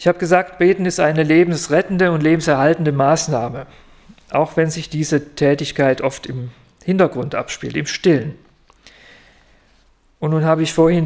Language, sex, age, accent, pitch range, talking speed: German, male, 50-69, German, 145-175 Hz, 140 wpm